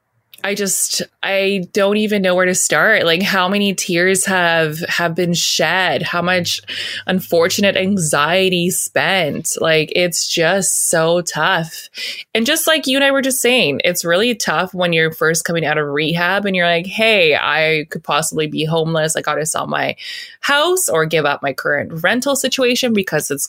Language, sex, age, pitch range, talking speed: English, female, 20-39, 150-195 Hz, 180 wpm